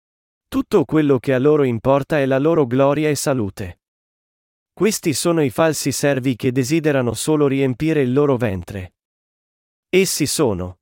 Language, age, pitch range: Italian, 40-59, 130-165 Hz